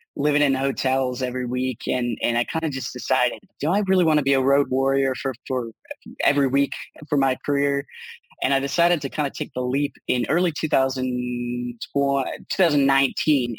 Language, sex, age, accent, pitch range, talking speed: English, male, 20-39, American, 125-150 Hz, 175 wpm